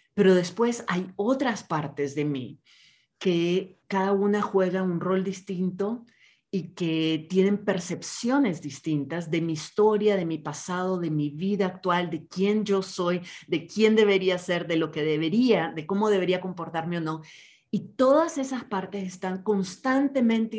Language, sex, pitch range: Spanish, female, 170-210 Hz